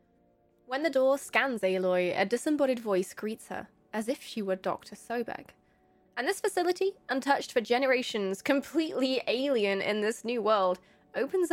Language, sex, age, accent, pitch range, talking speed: English, female, 20-39, British, 215-305 Hz, 150 wpm